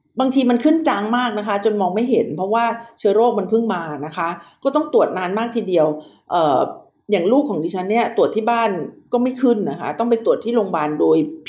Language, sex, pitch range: Thai, female, 180-250 Hz